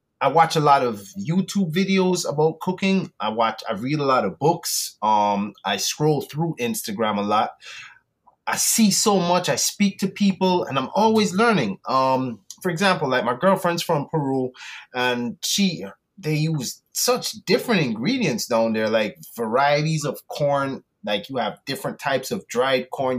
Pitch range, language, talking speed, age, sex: 130-185 Hz, English, 170 wpm, 30-49, male